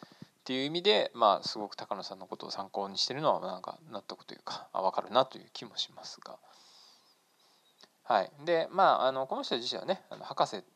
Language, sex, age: Japanese, male, 20-39